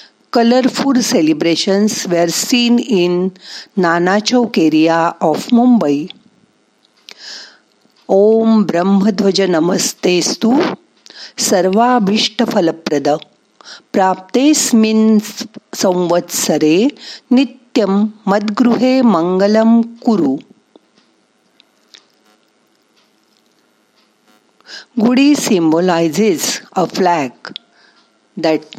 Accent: native